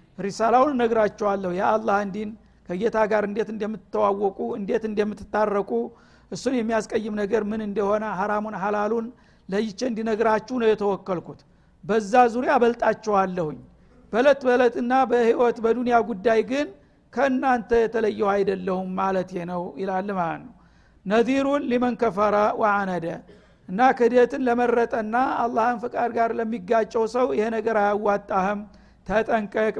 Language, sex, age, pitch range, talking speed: Amharic, male, 60-79, 210-235 Hz, 95 wpm